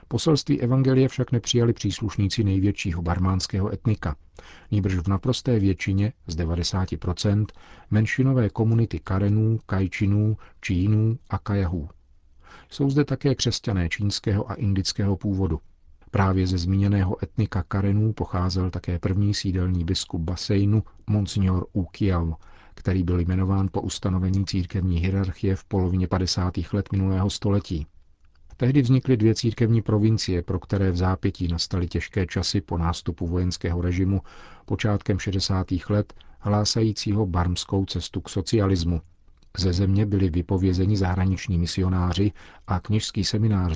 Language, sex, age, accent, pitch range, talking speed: Czech, male, 40-59, native, 90-105 Hz, 120 wpm